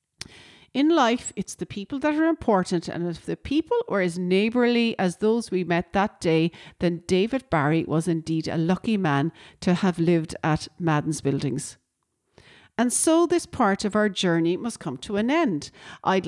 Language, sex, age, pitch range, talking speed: English, female, 40-59, 175-245 Hz, 175 wpm